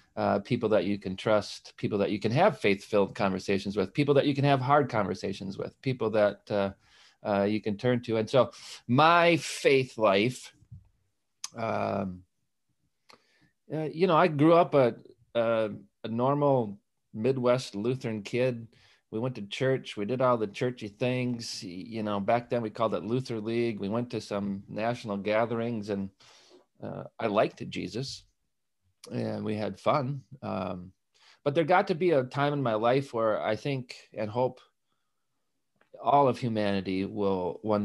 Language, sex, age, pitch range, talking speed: English, male, 40-59, 100-125 Hz, 165 wpm